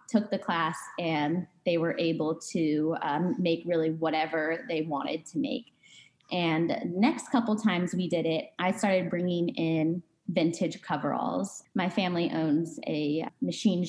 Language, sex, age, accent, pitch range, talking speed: English, female, 20-39, American, 160-205 Hz, 145 wpm